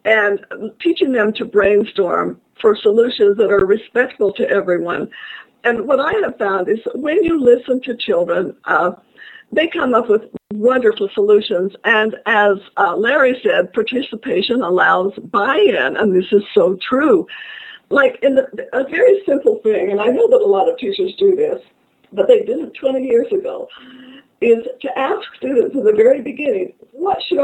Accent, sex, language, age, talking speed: American, female, English, 50-69, 170 wpm